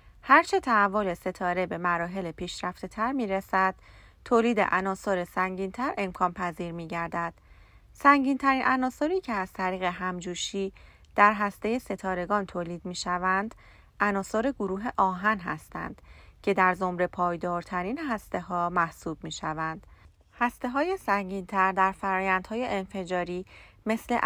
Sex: female